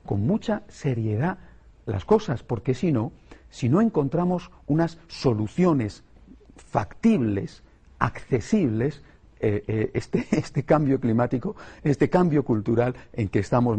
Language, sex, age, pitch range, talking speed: Spanish, male, 50-69, 105-140 Hz, 120 wpm